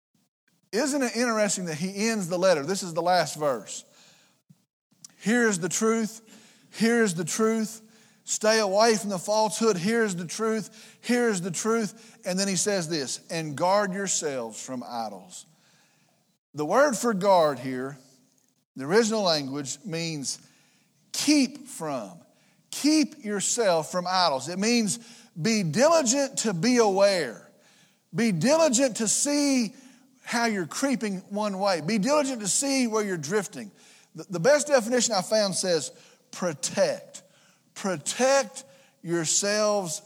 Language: English